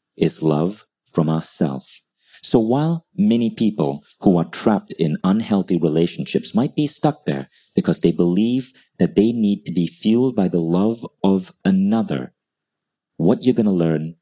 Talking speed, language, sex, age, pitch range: 155 wpm, English, male, 40-59, 85-110 Hz